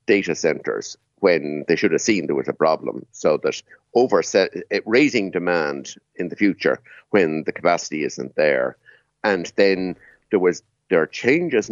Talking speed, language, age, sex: 170 wpm, English, 50-69, male